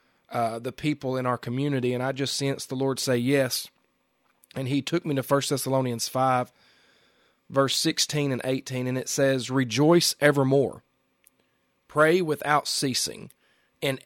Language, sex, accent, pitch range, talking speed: English, male, American, 130-155 Hz, 150 wpm